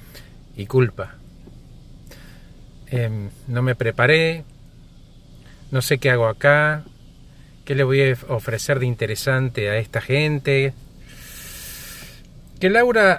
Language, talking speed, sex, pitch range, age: Spanish, 105 wpm, male, 115-150 Hz, 50-69